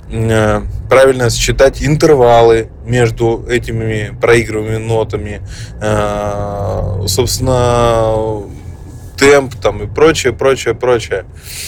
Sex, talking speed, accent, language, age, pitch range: male, 70 wpm, native, Russian, 20-39, 105-125 Hz